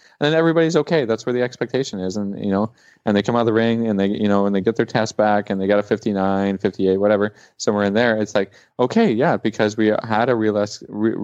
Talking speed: 260 wpm